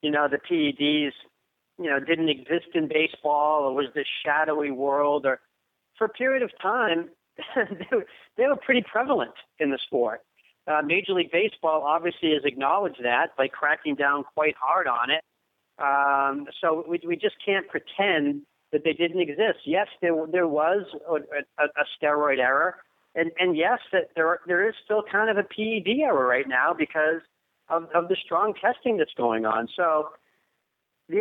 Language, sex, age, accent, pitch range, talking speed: English, male, 50-69, American, 140-180 Hz, 175 wpm